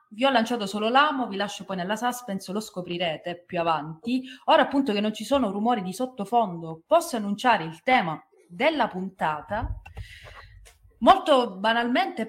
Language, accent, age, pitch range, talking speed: Italian, native, 30-49, 175-235 Hz, 150 wpm